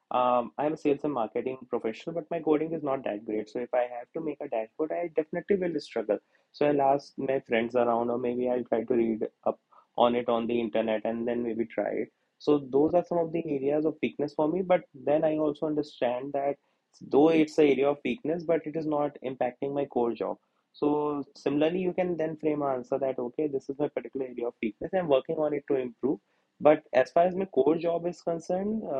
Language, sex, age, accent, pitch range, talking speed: English, male, 20-39, Indian, 120-155 Hz, 230 wpm